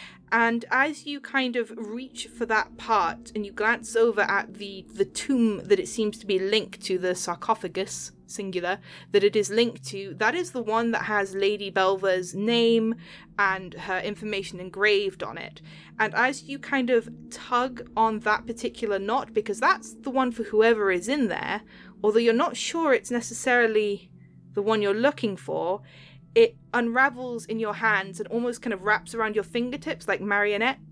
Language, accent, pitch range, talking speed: English, British, 205-245 Hz, 180 wpm